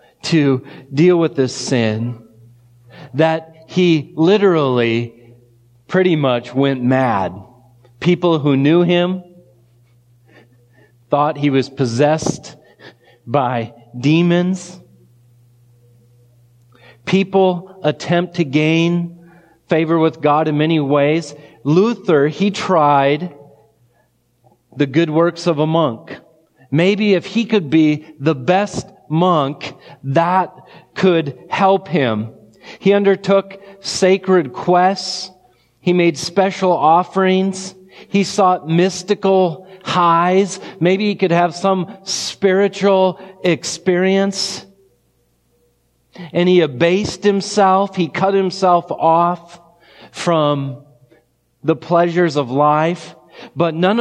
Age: 40-59